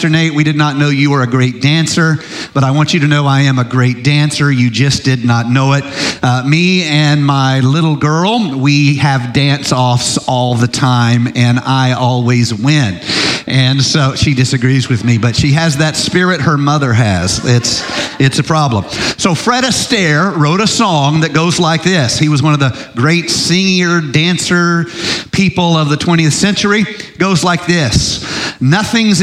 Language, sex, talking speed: English, male, 180 wpm